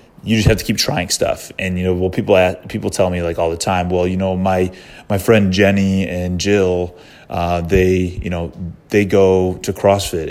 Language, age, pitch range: English, 20-39, 85-95 Hz